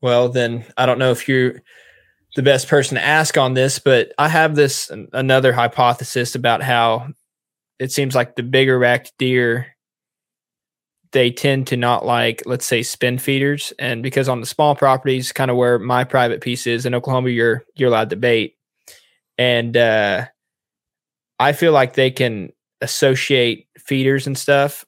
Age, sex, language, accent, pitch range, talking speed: 20-39, male, English, American, 120-135 Hz, 165 wpm